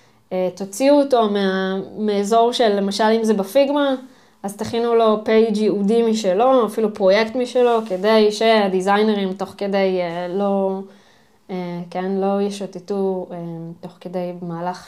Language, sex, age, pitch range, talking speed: Hebrew, female, 20-39, 185-230 Hz, 115 wpm